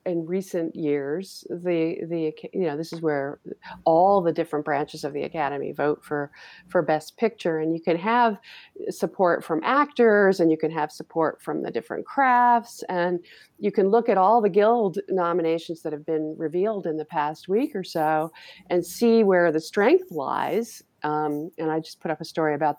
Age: 40-59